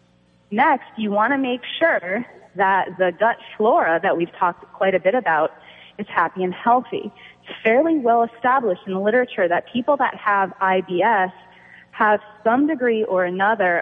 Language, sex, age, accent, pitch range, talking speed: English, female, 30-49, American, 175-220 Hz, 165 wpm